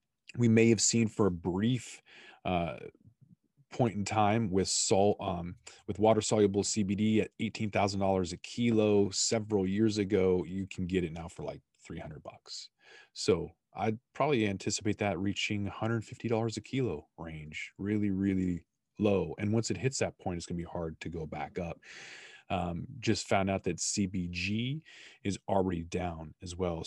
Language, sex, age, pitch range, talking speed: English, male, 30-49, 85-105 Hz, 175 wpm